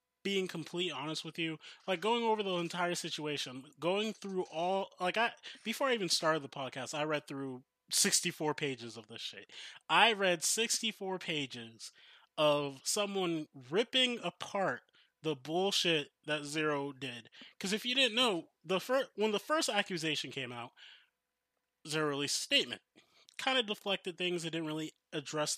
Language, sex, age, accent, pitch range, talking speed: English, male, 20-39, American, 155-235 Hz, 160 wpm